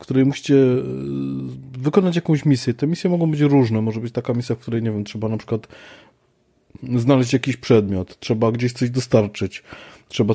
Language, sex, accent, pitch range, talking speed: Polish, male, native, 110-130 Hz, 175 wpm